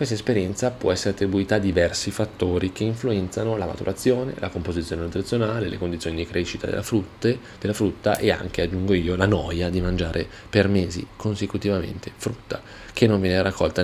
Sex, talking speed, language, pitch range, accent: male, 170 wpm, Italian, 90-110 Hz, native